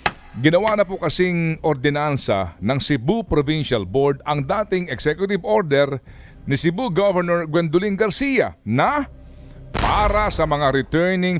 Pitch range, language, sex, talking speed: 125-190 Hz, Filipino, male, 120 wpm